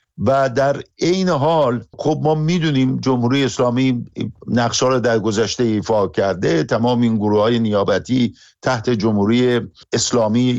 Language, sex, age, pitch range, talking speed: Persian, male, 50-69, 115-135 Hz, 125 wpm